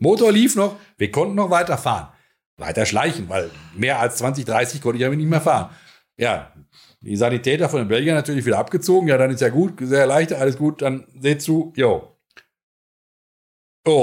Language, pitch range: German, 110-150 Hz